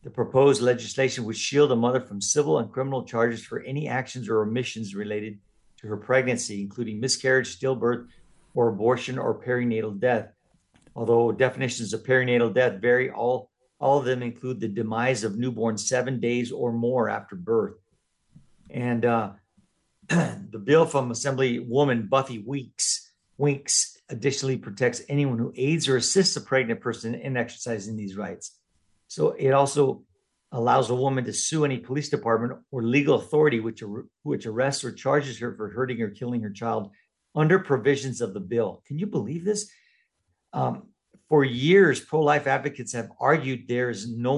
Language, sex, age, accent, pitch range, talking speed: English, male, 50-69, American, 115-135 Hz, 160 wpm